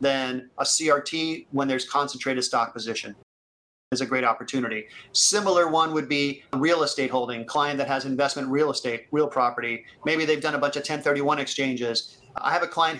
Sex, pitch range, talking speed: male, 130-155 Hz, 180 wpm